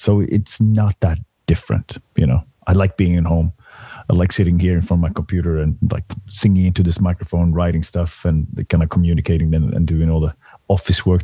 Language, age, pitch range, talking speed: English, 30-49, 85-100 Hz, 215 wpm